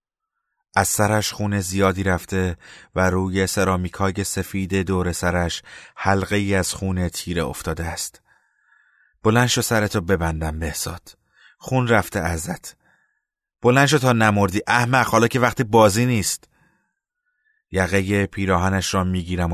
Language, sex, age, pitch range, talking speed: Persian, male, 30-49, 90-105 Hz, 125 wpm